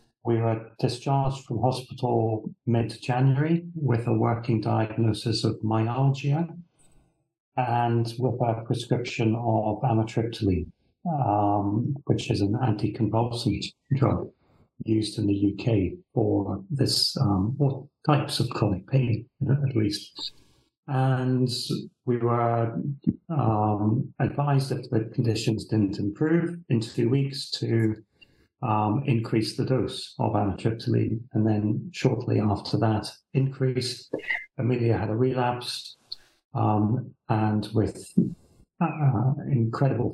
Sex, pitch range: male, 110-135 Hz